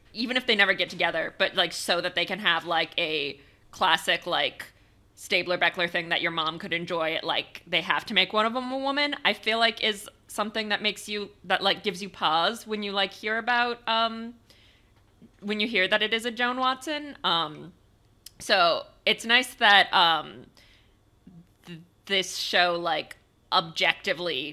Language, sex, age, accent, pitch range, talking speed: English, female, 20-39, American, 160-210 Hz, 180 wpm